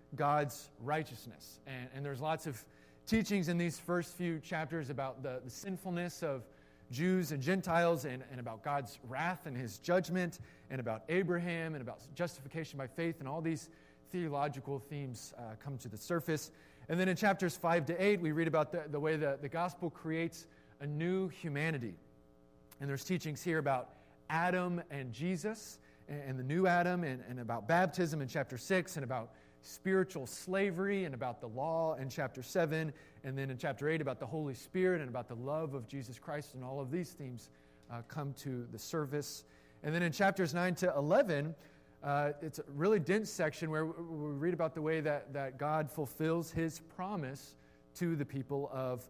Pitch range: 130-170 Hz